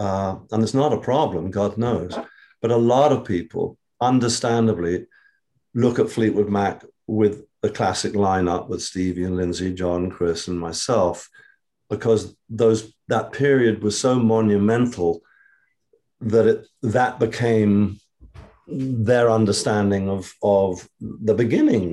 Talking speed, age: 130 wpm, 50-69